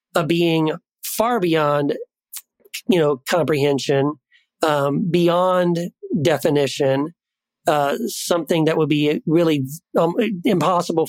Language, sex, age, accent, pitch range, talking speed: English, male, 40-59, American, 155-220 Hz, 95 wpm